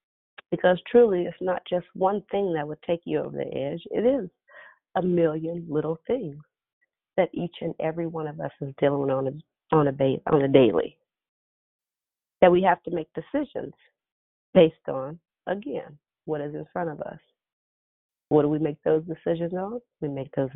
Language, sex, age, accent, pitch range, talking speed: English, female, 40-59, American, 145-195 Hz, 180 wpm